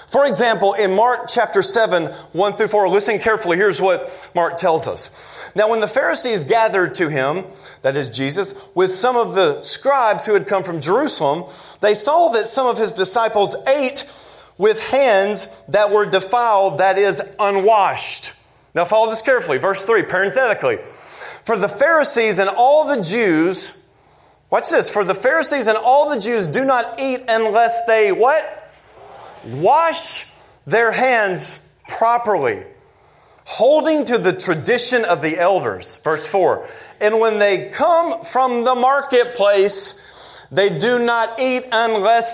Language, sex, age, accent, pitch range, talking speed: English, male, 30-49, American, 205-265 Hz, 150 wpm